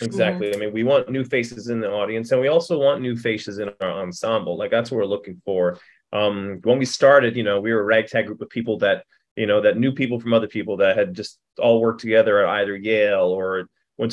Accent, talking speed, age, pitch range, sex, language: American, 245 wpm, 20-39, 105-120 Hz, male, English